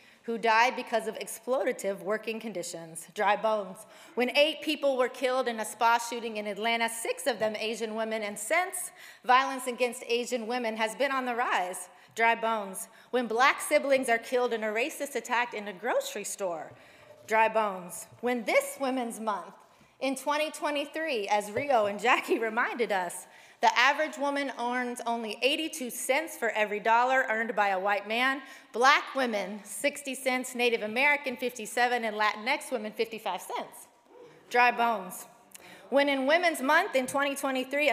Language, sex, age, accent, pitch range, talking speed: English, female, 30-49, American, 215-270 Hz, 160 wpm